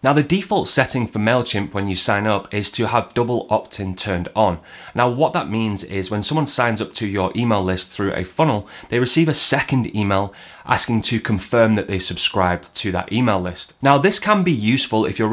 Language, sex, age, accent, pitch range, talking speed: English, male, 30-49, British, 95-125 Hz, 215 wpm